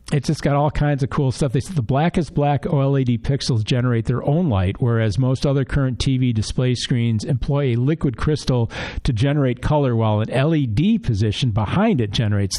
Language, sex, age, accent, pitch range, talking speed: English, male, 50-69, American, 115-145 Hz, 190 wpm